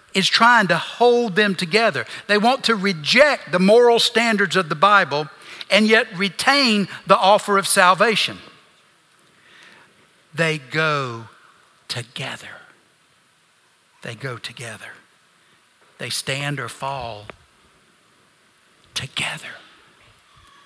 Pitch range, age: 185-245 Hz, 60-79